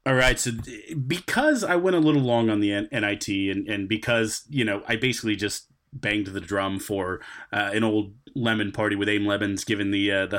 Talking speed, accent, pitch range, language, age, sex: 210 wpm, American, 100-125 Hz, English, 30-49, male